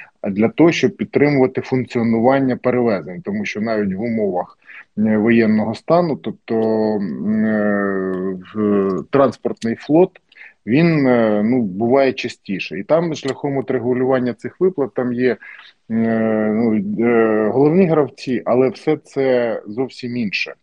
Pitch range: 110-135 Hz